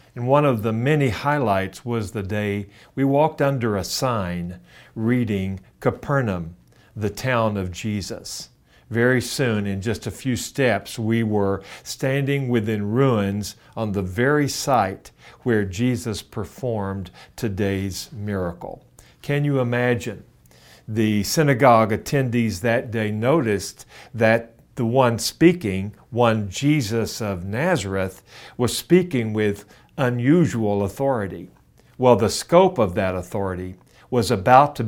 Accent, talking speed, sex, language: American, 125 wpm, male, English